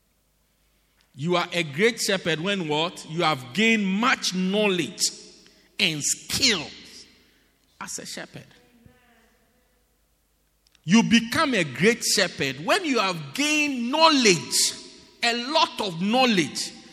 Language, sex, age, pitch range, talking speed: English, male, 50-69, 195-275 Hz, 110 wpm